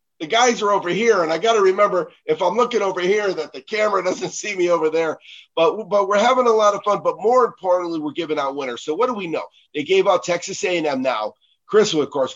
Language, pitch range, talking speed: English, 140-215 Hz, 250 wpm